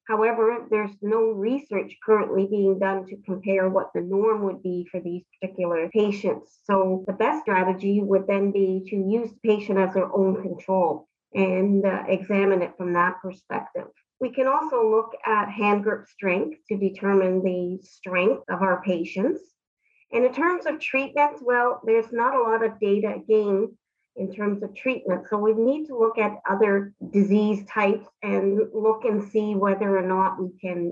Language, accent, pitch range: English, American, 190-215 Hz